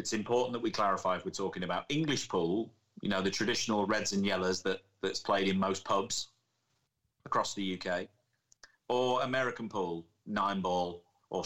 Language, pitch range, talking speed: English, 90-110 Hz, 170 wpm